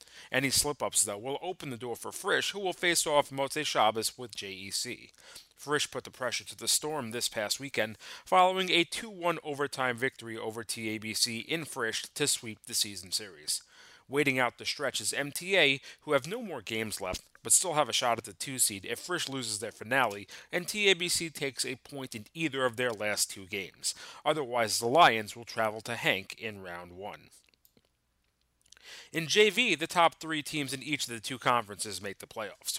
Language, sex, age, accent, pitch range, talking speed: English, male, 30-49, American, 110-145 Hz, 190 wpm